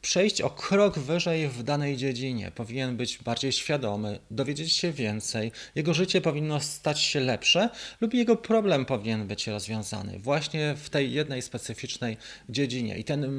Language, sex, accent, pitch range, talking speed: Polish, male, native, 115-155 Hz, 150 wpm